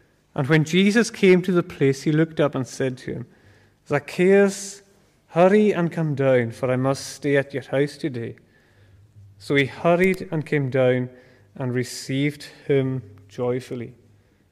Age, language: 30-49, English